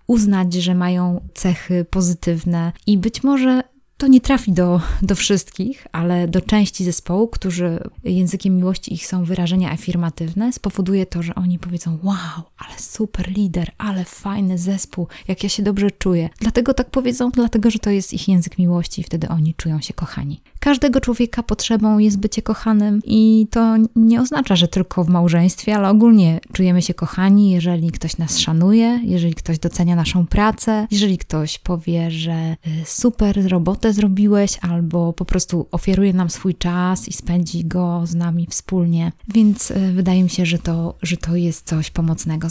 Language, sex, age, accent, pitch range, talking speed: Polish, female, 20-39, native, 170-205 Hz, 165 wpm